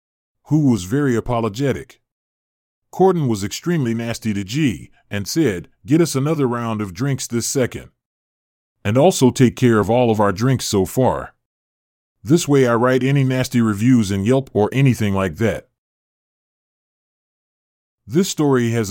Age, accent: 30-49, American